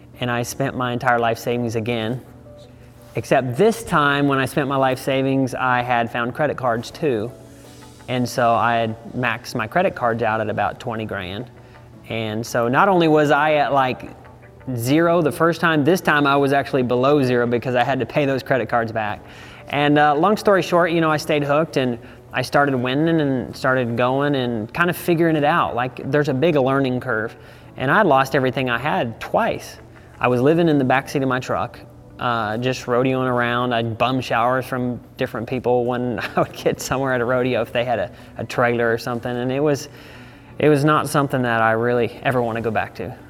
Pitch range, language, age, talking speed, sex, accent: 120-140 Hz, English, 30-49, 210 wpm, male, American